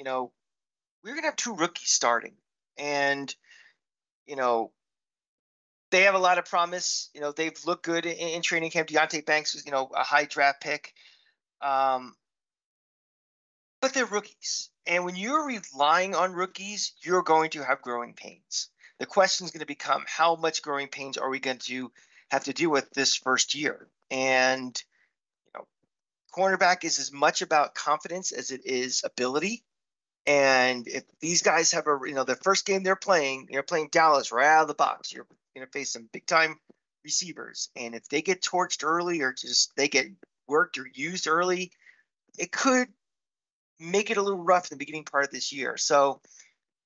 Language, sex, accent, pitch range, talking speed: English, male, American, 135-180 Hz, 185 wpm